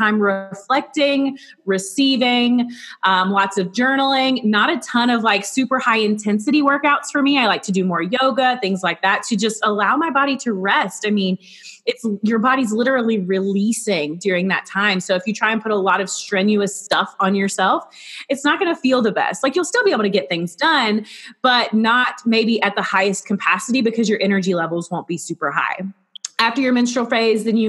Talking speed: 200 wpm